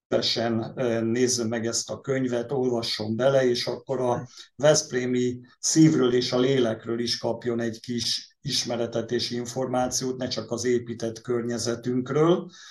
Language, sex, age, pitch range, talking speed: Hungarian, male, 50-69, 115-130 Hz, 130 wpm